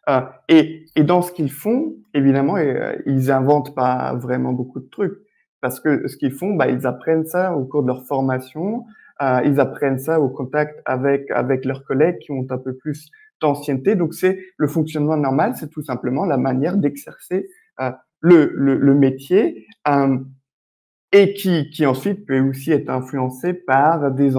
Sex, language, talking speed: male, French, 180 wpm